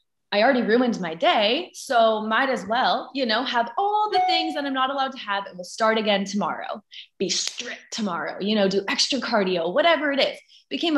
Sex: female